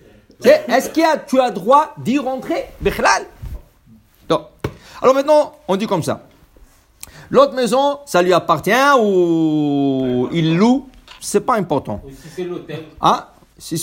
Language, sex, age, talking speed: English, male, 60-79, 125 wpm